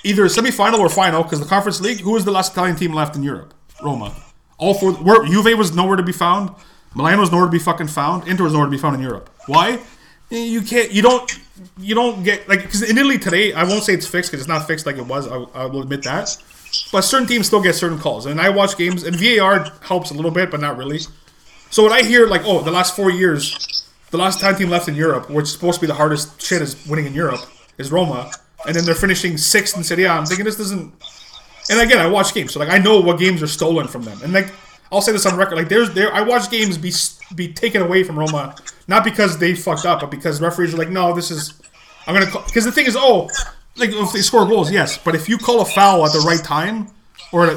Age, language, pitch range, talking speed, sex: 30-49, English, 160-205 Hz, 260 wpm, male